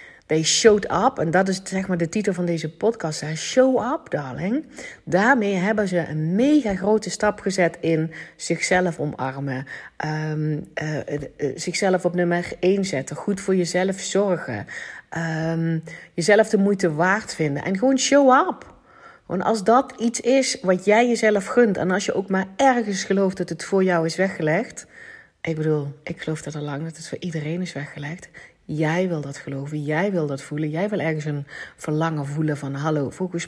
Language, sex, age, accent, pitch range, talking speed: Dutch, female, 40-59, Dutch, 155-210 Hz, 185 wpm